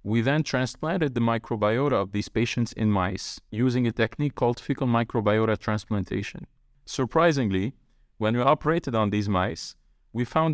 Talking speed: 150 wpm